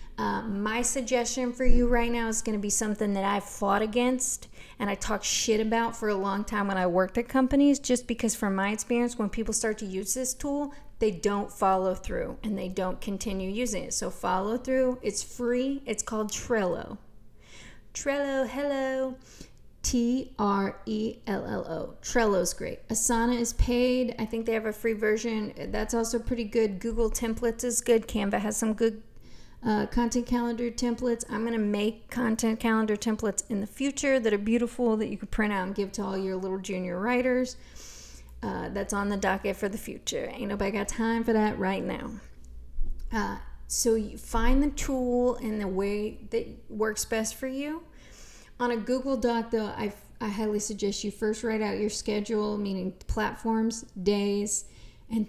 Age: 30-49